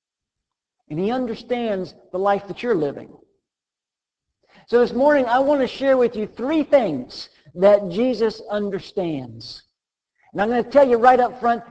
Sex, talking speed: male, 160 wpm